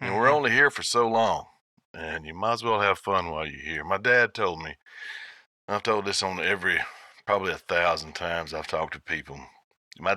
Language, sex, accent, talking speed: English, male, American, 200 wpm